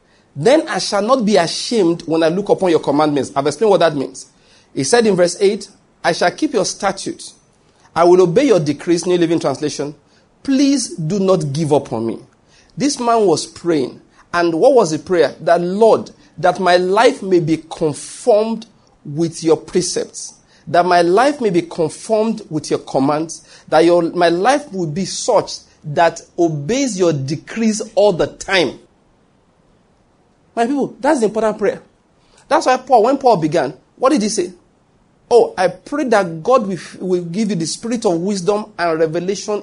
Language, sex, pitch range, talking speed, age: English, male, 165-230 Hz, 175 wpm, 40-59